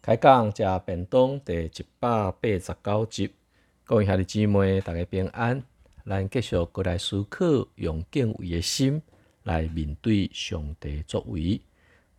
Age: 50-69